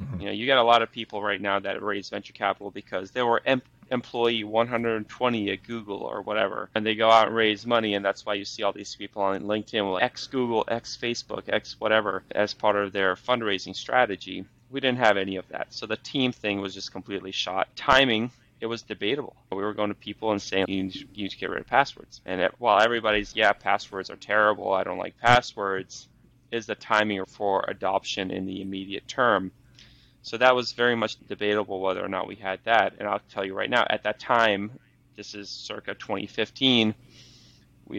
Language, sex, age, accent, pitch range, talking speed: English, male, 20-39, American, 100-120 Hz, 210 wpm